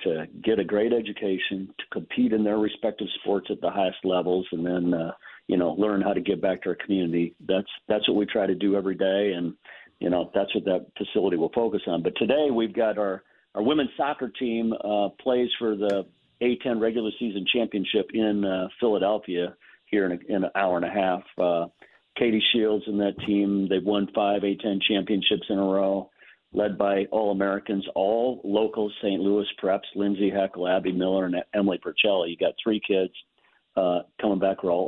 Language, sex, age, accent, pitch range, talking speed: English, male, 50-69, American, 95-110 Hz, 200 wpm